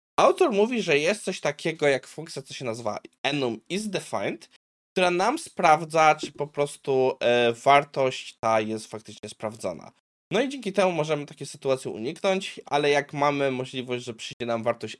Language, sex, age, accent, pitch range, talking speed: Polish, male, 20-39, native, 120-160 Hz, 165 wpm